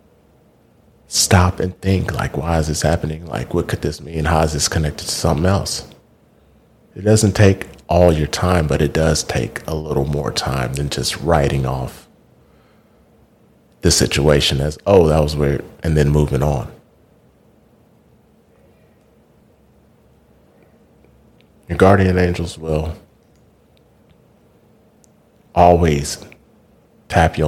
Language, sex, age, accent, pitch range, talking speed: English, male, 30-49, American, 75-90 Hz, 120 wpm